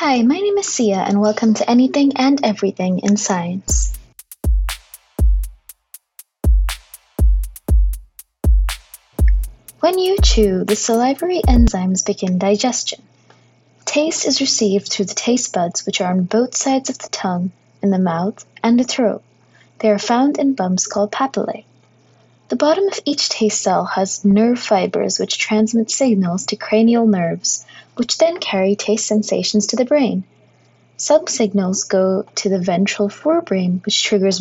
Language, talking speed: English, 140 wpm